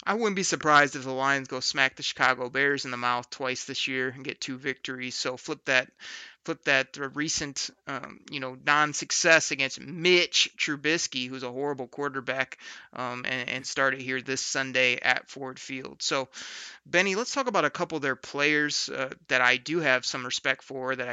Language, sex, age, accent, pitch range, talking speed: English, male, 30-49, American, 130-150 Hz, 195 wpm